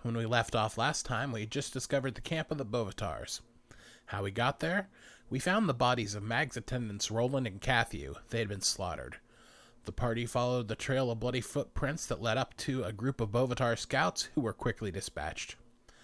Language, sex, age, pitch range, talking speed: English, male, 30-49, 105-135 Hz, 200 wpm